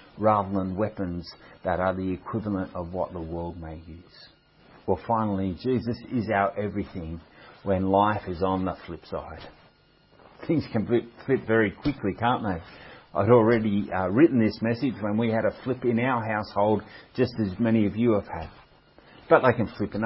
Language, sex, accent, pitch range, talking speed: English, male, Australian, 95-125 Hz, 180 wpm